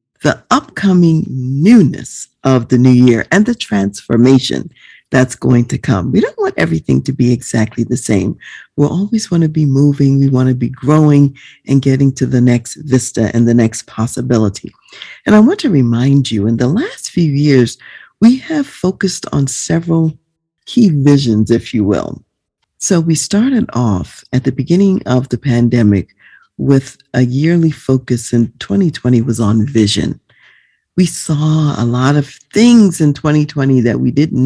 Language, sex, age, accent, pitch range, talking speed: English, female, 50-69, American, 120-165 Hz, 160 wpm